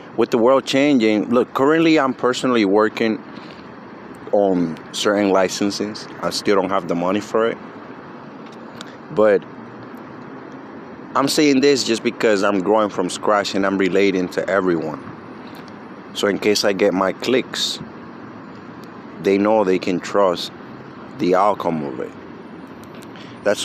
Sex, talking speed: male, 130 wpm